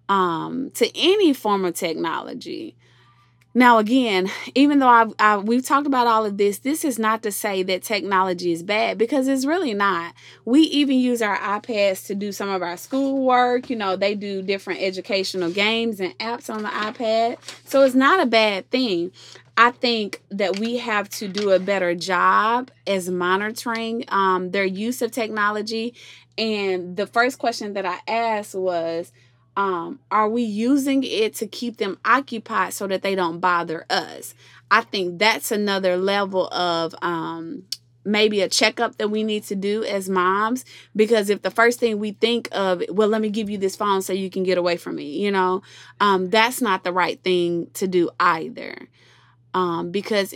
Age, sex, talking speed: 20-39, female, 180 wpm